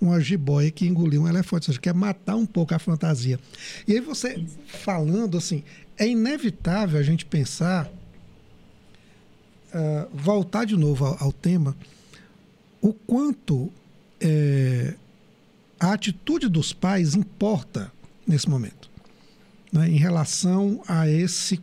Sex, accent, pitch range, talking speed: male, Brazilian, 155-205 Hz, 125 wpm